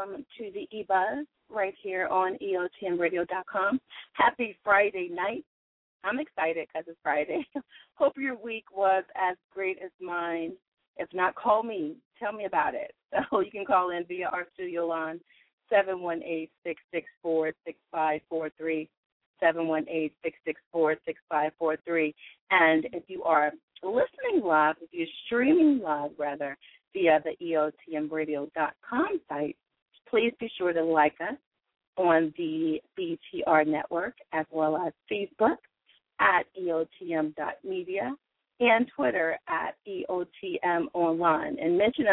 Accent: American